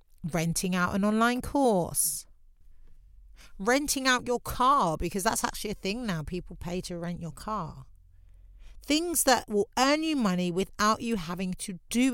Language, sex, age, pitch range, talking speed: English, female, 40-59, 165-225 Hz, 160 wpm